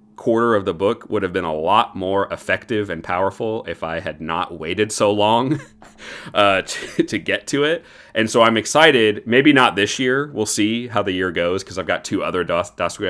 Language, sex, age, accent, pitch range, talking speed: English, male, 30-49, American, 85-110 Hz, 205 wpm